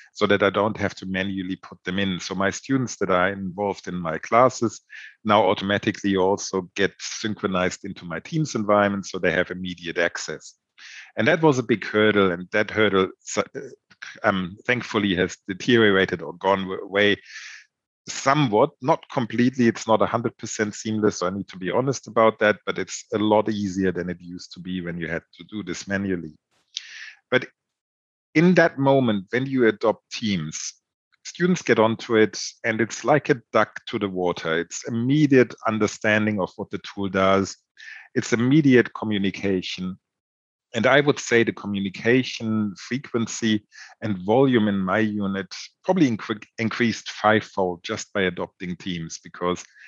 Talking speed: 160 wpm